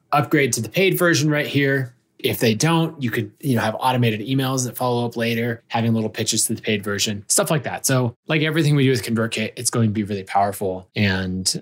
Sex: male